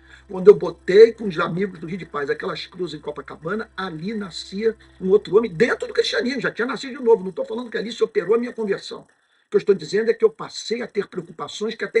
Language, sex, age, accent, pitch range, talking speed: Portuguese, male, 50-69, Brazilian, 160-235 Hz, 255 wpm